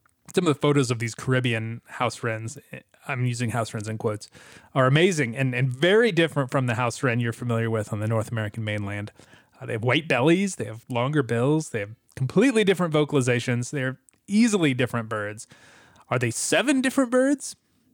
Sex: male